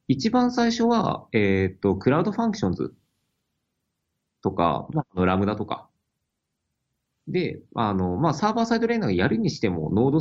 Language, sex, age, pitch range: Japanese, male, 30-49, 95-155 Hz